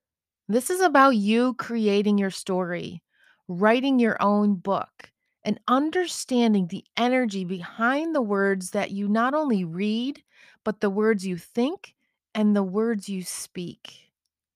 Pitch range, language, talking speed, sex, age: 185-235 Hz, English, 135 wpm, female, 30-49